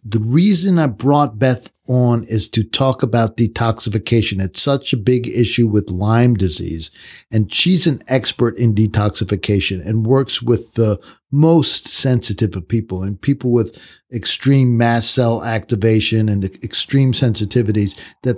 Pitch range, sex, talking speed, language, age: 110-130 Hz, male, 145 wpm, English, 50-69